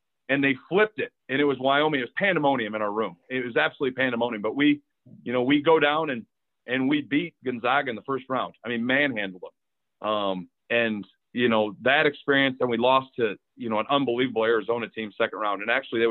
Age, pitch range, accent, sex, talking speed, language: 40-59, 100-125 Hz, American, male, 220 wpm, English